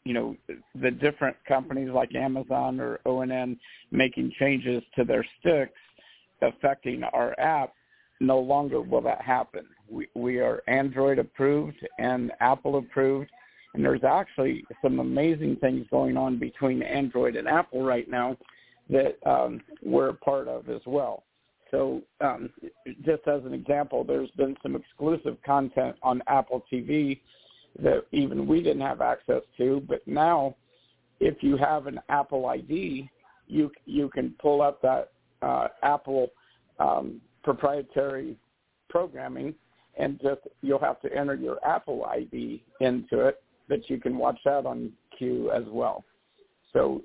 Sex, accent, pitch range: male, American, 125-145 Hz